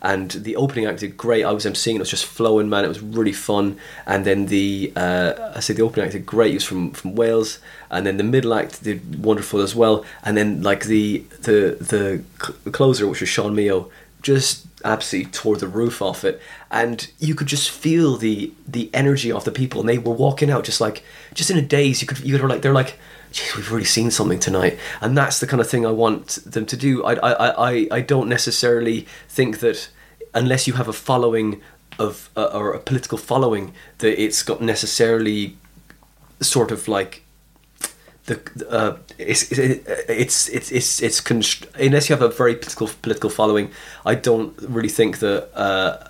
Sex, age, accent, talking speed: male, 20-39, British, 205 wpm